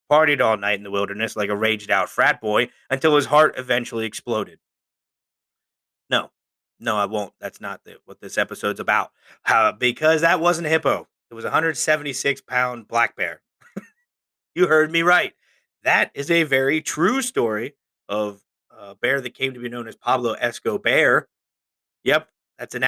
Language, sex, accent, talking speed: English, male, American, 165 wpm